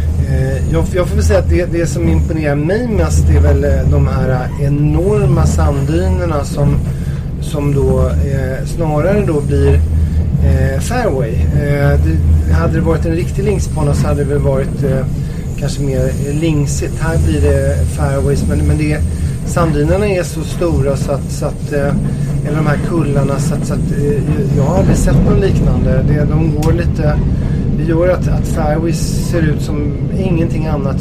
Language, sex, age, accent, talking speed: Swedish, male, 30-49, native, 170 wpm